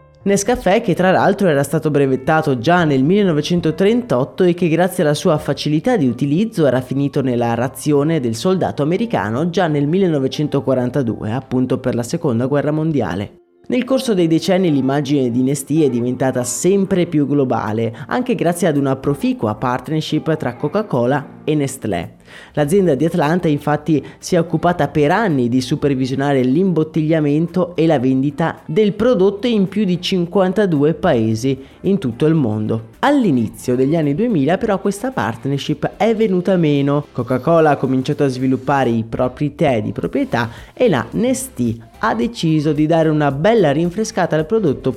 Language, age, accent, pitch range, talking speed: Italian, 20-39, native, 130-180 Hz, 155 wpm